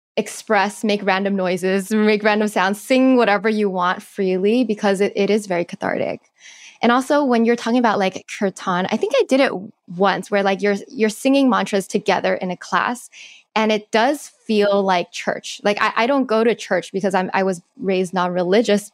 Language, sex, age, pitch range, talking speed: English, female, 10-29, 190-230 Hz, 195 wpm